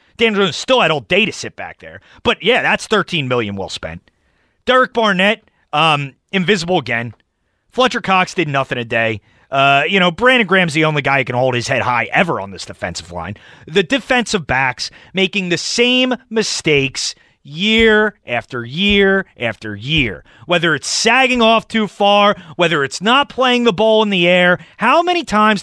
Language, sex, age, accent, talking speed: English, male, 30-49, American, 180 wpm